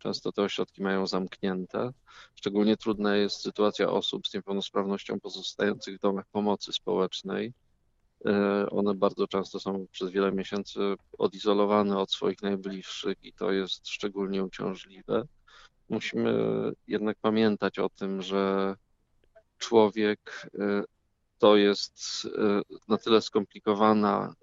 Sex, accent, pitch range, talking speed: male, native, 100-110 Hz, 110 wpm